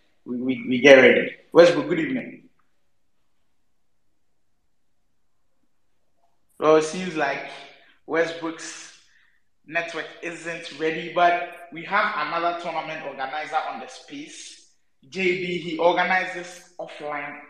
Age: 20-39